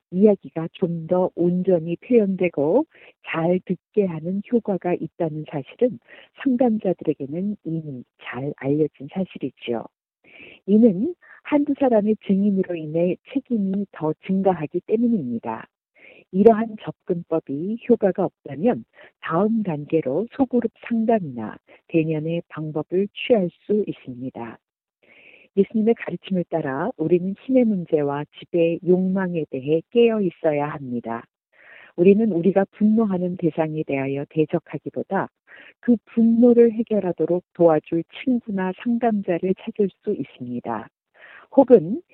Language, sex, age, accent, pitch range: Korean, female, 50-69, native, 160-220 Hz